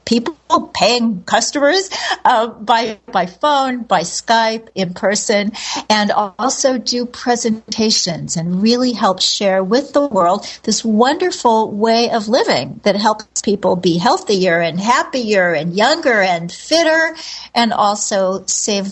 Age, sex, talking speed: 60-79, female, 130 wpm